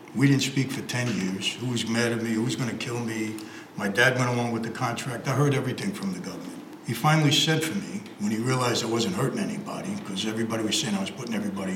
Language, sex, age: English, male, 60-79